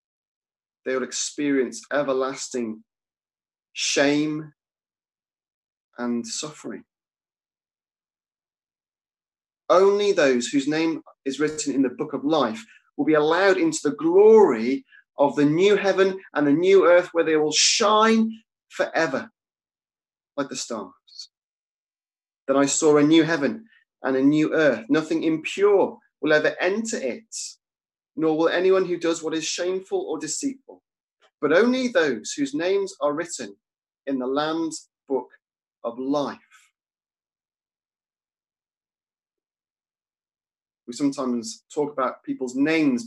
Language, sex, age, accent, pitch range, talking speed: English, male, 30-49, British, 140-205 Hz, 120 wpm